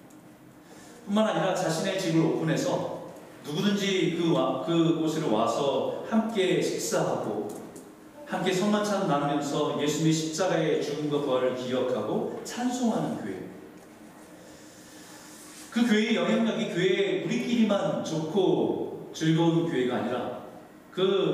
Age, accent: 40-59, native